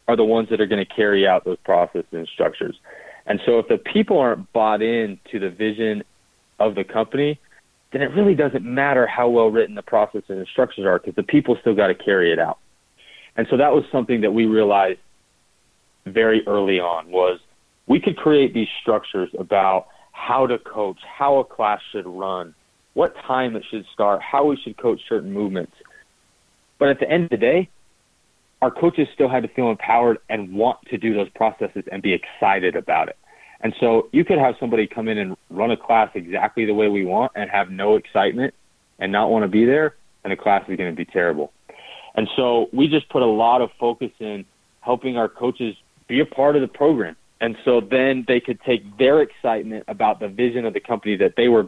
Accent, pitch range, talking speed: American, 105-130 Hz, 210 wpm